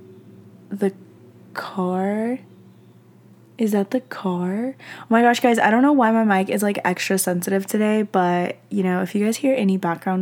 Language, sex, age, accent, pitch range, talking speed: English, female, 10-29, American, 180-210 Hz, 175 wpm